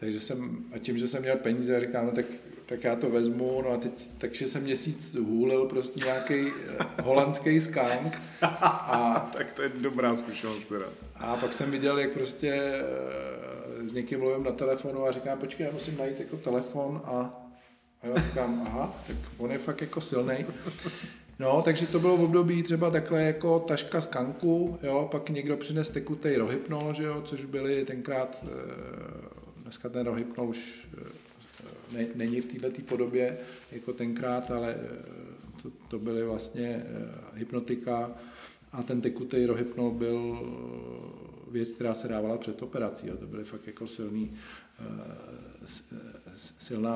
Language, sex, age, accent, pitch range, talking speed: Czech, male, 40-59, native, 120-135 Hz, 150 wpm